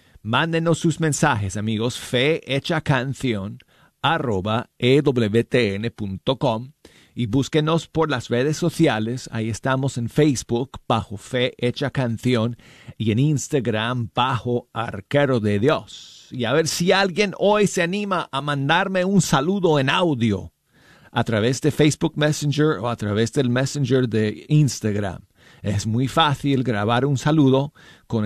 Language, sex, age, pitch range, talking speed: Spanish, male, 40-59, 115-150 Hz, 130 wpm